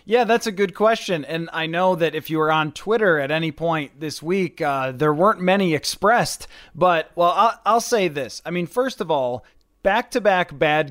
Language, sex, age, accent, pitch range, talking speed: English, male, 30-49, American, 155-185 Hz, 205 wpm